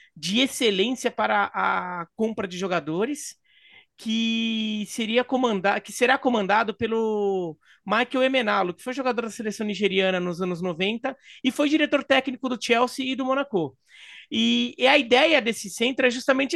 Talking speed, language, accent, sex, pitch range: 150 wpm, Portuguese, Brazilian, male, 205-270 Hz